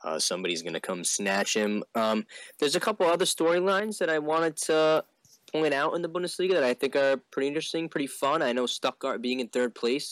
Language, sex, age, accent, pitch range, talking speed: English, male, 20-39, American, 105-140 Hz, 220 wpm